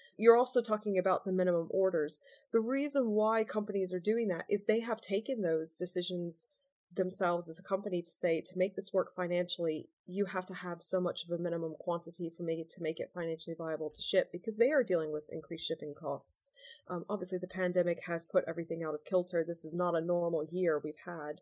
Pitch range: 175-225 Hz